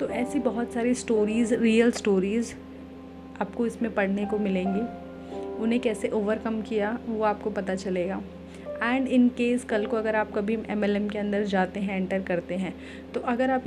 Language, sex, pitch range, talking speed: Hindi, female, 195-230 Hz, 165 wpm